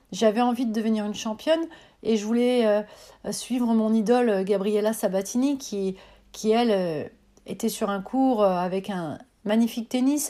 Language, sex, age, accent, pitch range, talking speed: French, female, 40-59, French, 205-255 Hz, 145 wpm